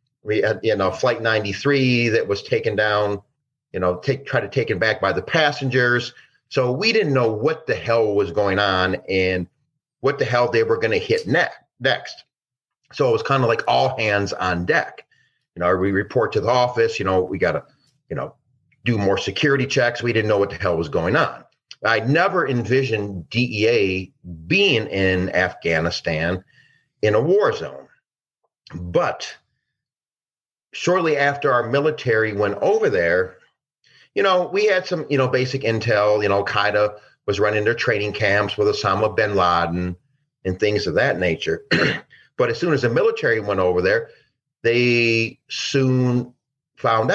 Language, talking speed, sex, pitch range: English, 170 wpm, male, 105-145 Hz